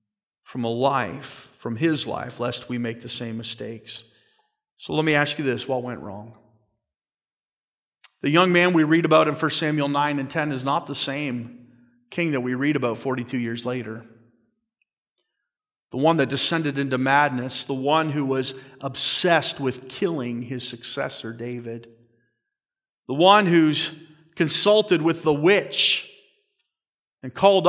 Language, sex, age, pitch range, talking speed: English, male, 40-59, 125-175 Hz, 150 wpm